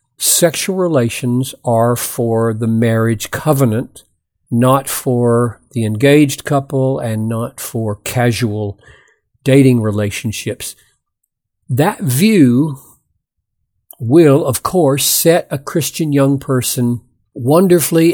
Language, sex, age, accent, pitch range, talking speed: English, male, 50-69, American, 115-150 Hz, 95 wpm